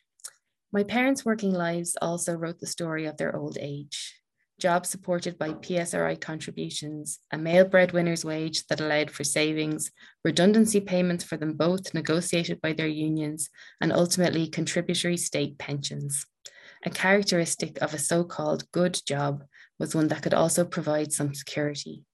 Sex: female